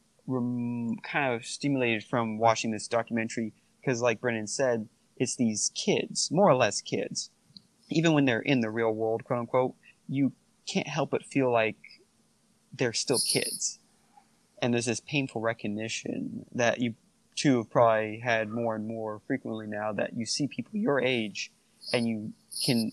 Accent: American